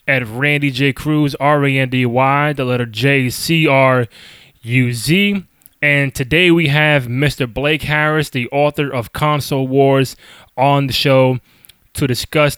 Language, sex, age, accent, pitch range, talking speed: English, male, 20-39, American, 130-150 Hz, 120 wpm